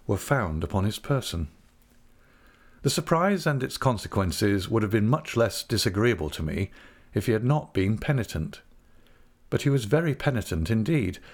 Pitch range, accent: 100-135 Hz, British